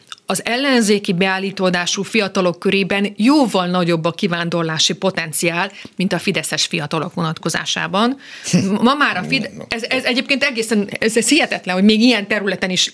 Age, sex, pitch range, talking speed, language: 30-49, female, 180-225 Hz, 150 wpm, Hungarian